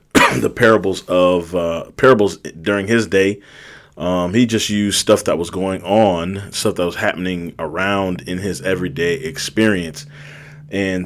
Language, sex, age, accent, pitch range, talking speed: English, male, 30-49, American, 95-115 Hz, 145 wpm